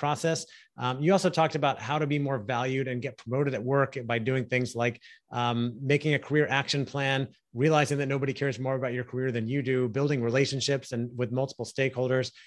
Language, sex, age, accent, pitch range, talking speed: English, male, 30-49, American, 125-150 Hz, 205 wpm